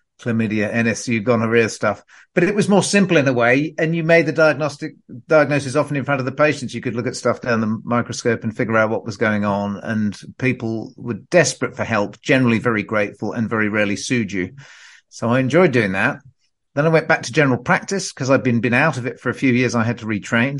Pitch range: 110-140 Hz